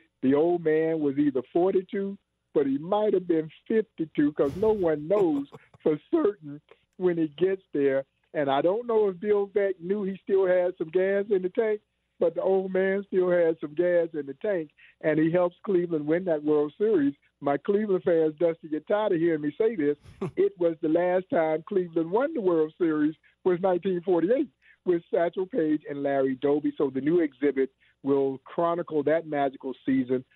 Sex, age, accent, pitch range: male, 50-69, American, 140-185 Hz